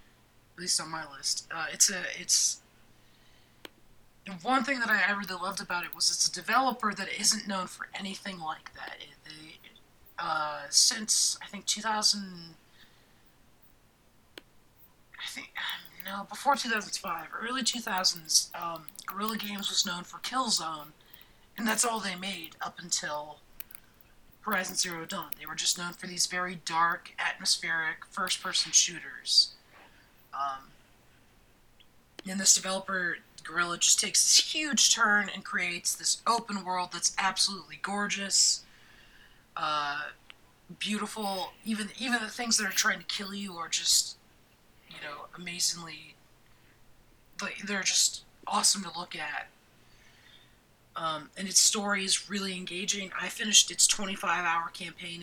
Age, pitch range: 30-49, 165-205 Hz